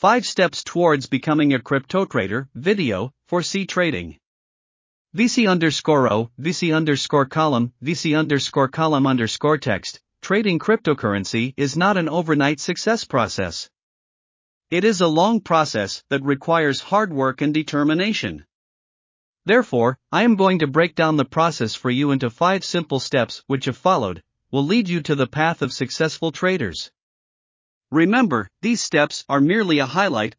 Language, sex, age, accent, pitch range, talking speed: English, male, 50-69, American, 135-170 Hz, 150 wpm